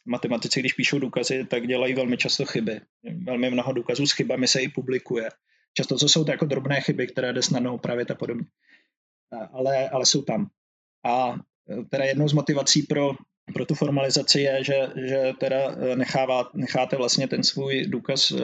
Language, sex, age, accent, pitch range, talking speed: Czech, male, 20-39, native, 125-135 Hz, 170 wpm